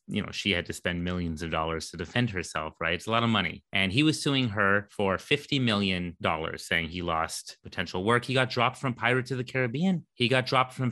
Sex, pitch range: male, 95-125 Hz